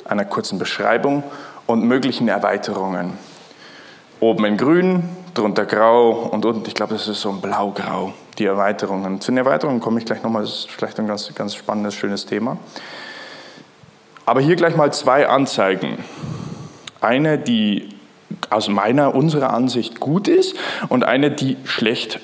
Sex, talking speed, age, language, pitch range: male, 150 wpm, 20-39, English, 110-140 Hz